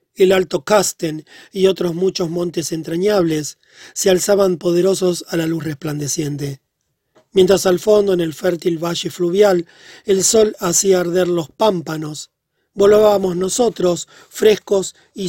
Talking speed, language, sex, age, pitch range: 130 wpm, Spanish, male, 40-59, 170-200 Hz